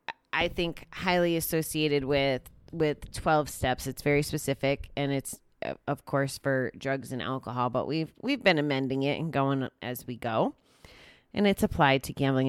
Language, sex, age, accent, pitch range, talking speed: English, female, 30-49, American, 130-155 Hz, 170 wpm